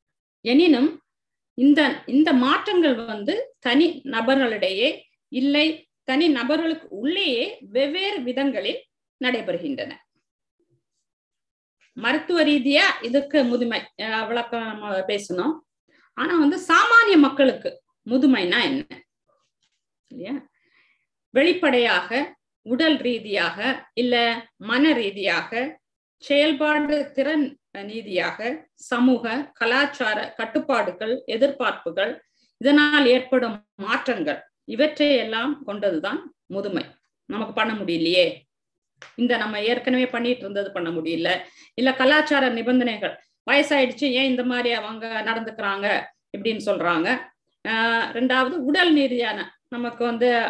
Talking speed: 85 wpm